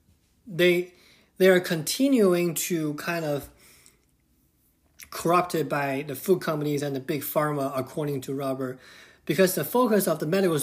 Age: 30-49